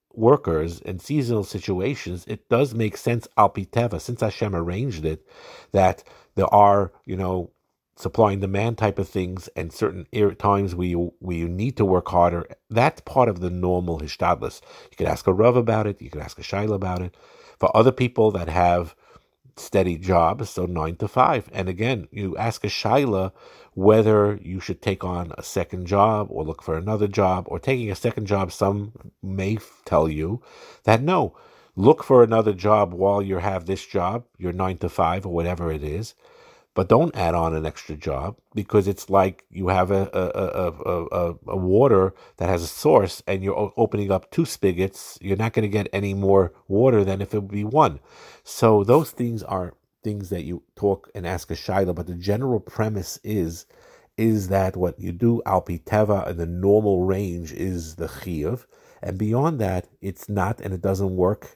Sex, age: male, 50-69